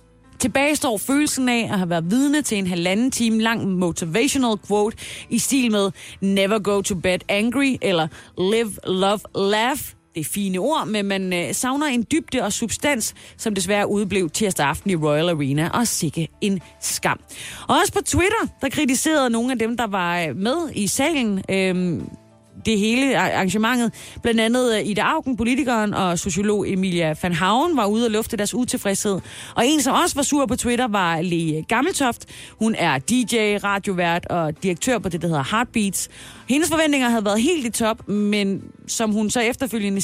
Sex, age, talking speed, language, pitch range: female, 30-49, 175 wpm, Danish, 180-240 Hz